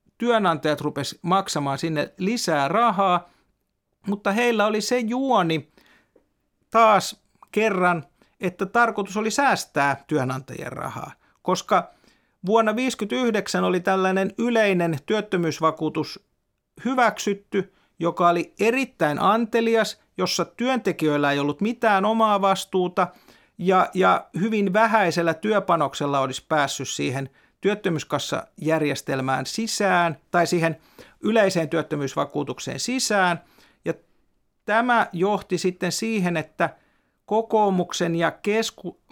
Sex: male